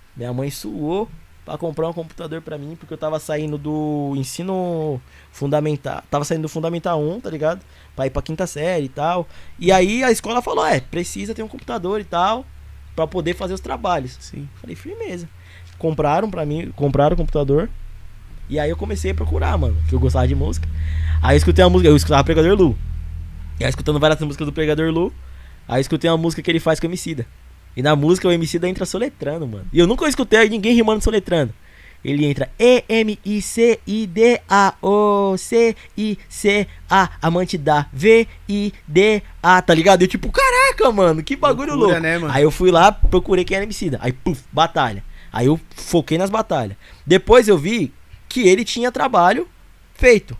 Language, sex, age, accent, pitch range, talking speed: Portuguese, male, 20-39, Brazilian, 135-190 Hz, 190 wpm